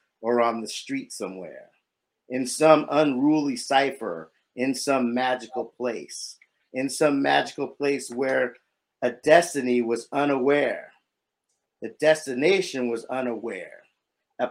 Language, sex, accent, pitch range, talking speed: English, male, American, 120-145 Hz, 110 wpm